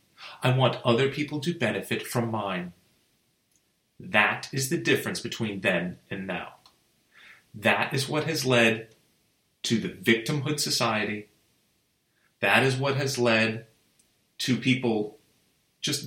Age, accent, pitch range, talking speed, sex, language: 30-49, American, 105-135 Hz, 125 wpm, male, English